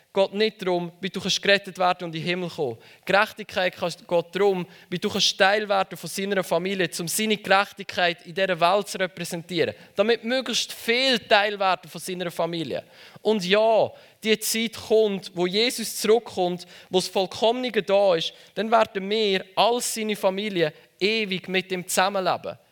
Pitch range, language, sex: 175-215 Hz, German, male